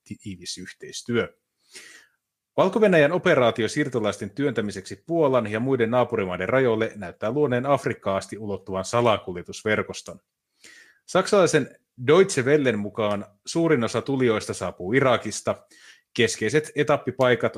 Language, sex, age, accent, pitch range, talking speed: Finnish, male, 30-49, native, 105-135 Hz, 90 wpm